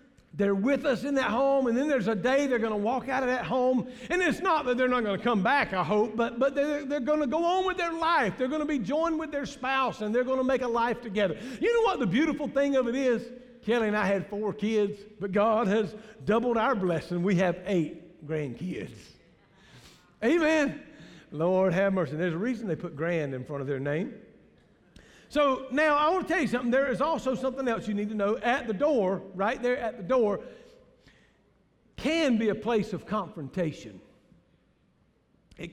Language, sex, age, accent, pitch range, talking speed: English, male, 50-69, American, 180-255 Hz, 215 wpm